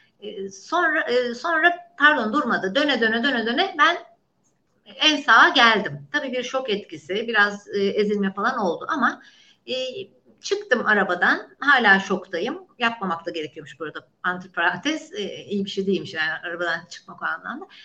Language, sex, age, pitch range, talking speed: Turkish, female, 60-79, 195-270 Hz, 140 wpm